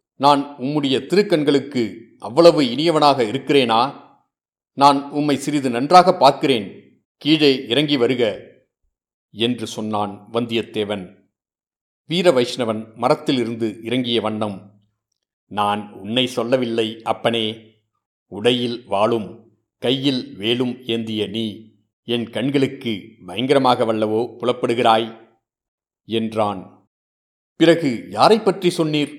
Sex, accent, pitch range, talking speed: male, native, 110-140 Hz, 90 wpm